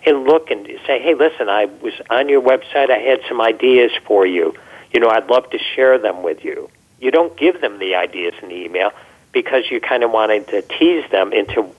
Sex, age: male, 50-69